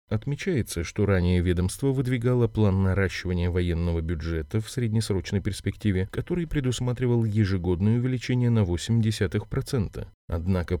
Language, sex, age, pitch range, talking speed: Russian, male, 30-49, 90-120 Hz, 105 wpm